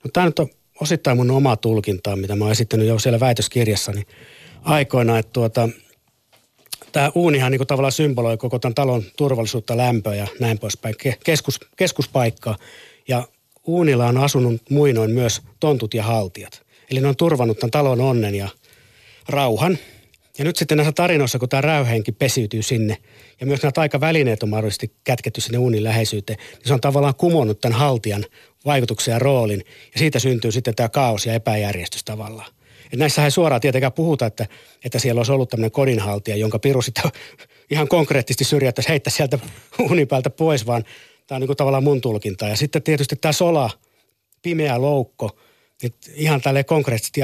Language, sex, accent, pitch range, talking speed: Finnish, male, native, 110-140 Hz, 165 wpm